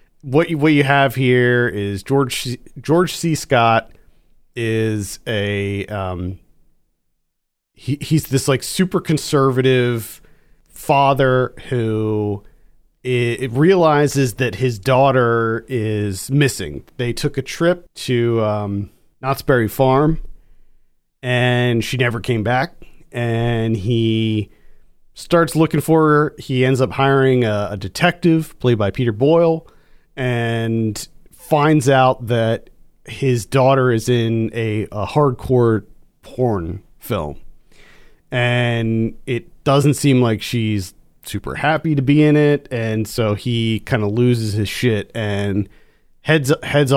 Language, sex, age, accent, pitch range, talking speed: English, male, 40-59, American, 110-140 Hz, 125 wpm